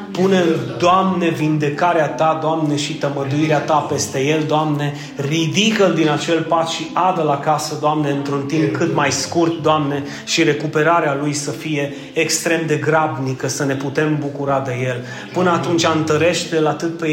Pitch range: 140-170 Hz